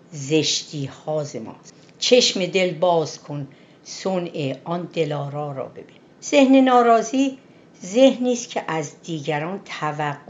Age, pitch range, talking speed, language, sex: 60-79, 140-205 Hz, 110 wpm, Persian, female